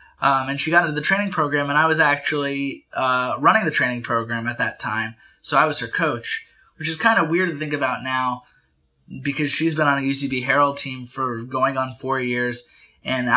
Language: English